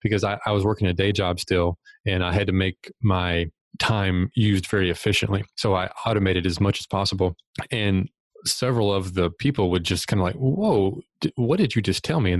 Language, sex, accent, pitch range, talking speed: English, male, American, 90-105 Hz, 215 wpm